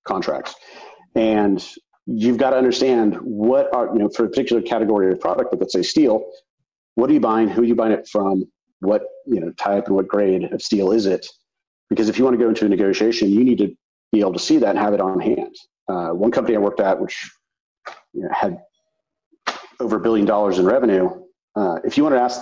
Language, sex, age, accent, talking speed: English, male, 40-59, American, 225 wpm